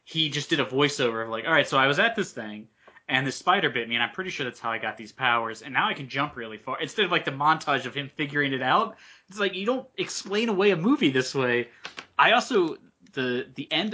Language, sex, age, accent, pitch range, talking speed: English, male, 20-39, American, 115-140 Hz, 265 wpm